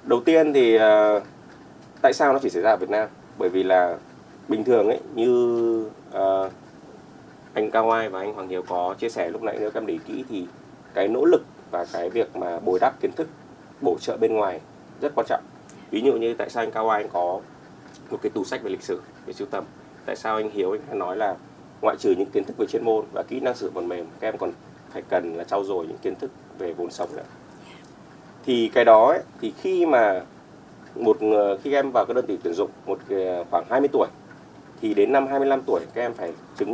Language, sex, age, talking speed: Vietnamese, male, 20-39, 235 wpm